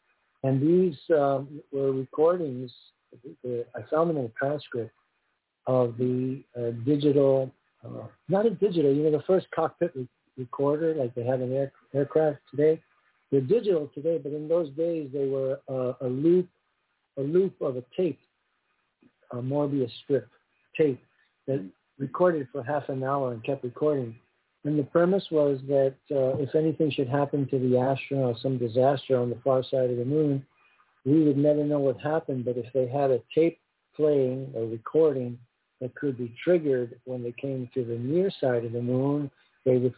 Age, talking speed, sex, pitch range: 50-69, 170 wpm, male, 125-150 Hz